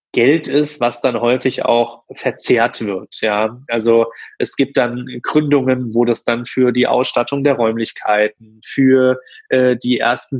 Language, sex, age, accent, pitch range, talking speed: German, male, 20-39, German, 115-140 Hz, 150 wpm